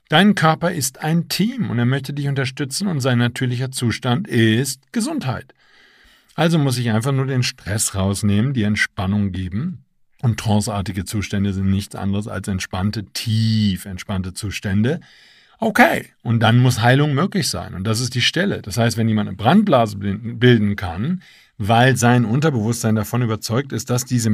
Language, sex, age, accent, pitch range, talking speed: German, male, 50-69, German, 105-135 Hz, 165 wpm